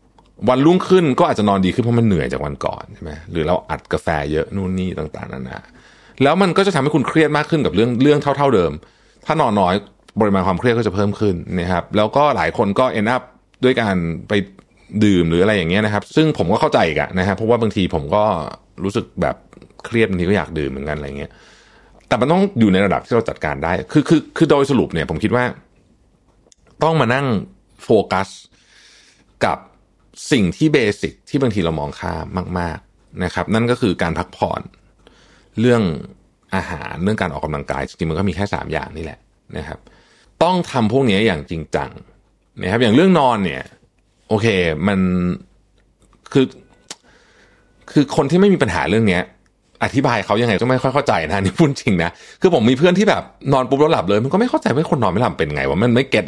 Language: Thai